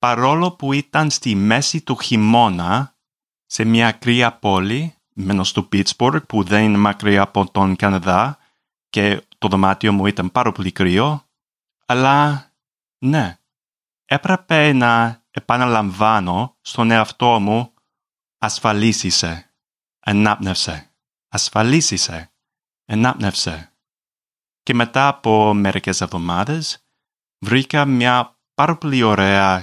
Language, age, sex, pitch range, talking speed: Greek, 30-49, male, 100-135 Hz, 105 wpm